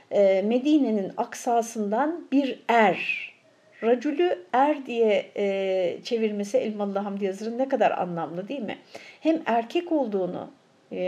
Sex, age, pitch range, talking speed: female, 60-79, 195-260 Hz, 105 wpm